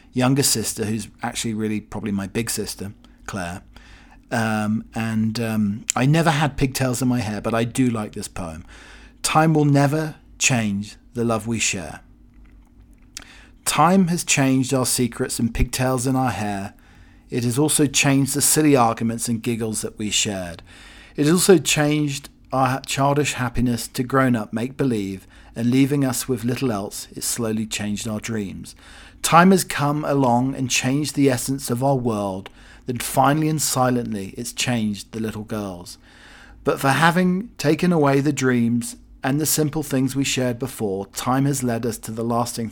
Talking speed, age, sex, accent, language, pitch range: 170 wpm, 40-59, male, British, English, 110-140 Hz